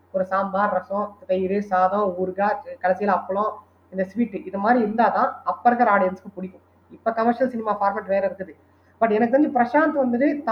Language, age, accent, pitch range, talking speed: Tamil, 20-39, native, 205-275 Hz, 165 wpm